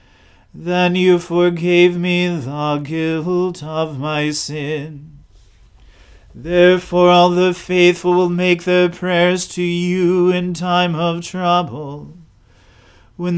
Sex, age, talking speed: male, 40-59, 110 wpm